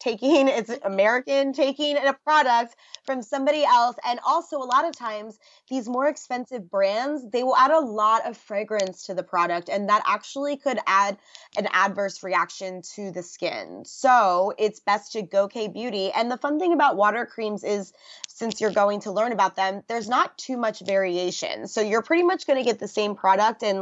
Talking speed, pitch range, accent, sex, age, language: 195 wpm, 195-255 Hz, American, female, 20-39, English